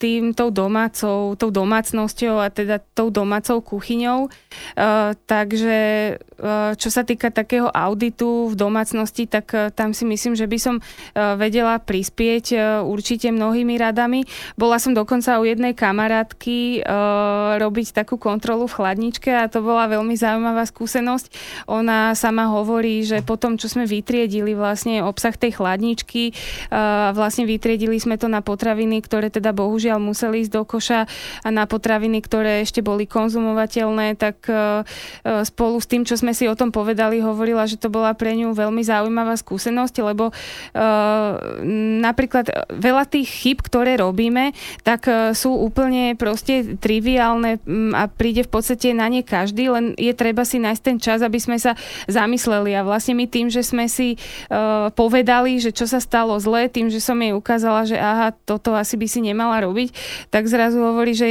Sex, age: female, 20-39